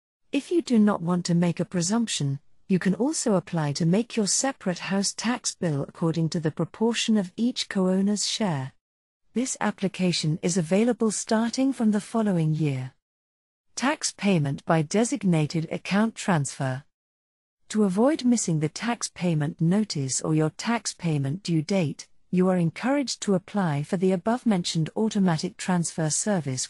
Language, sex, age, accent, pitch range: Chinese, female, 50-69, British, 155-215 Hz